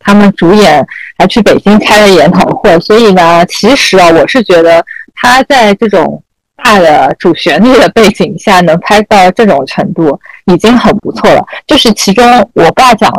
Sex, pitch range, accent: female, 175-215 Hz, native